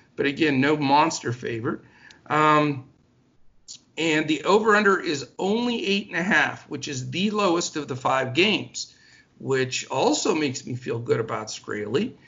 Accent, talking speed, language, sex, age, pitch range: American, 155 wpm, English, male, 50-69, 125-160 Hz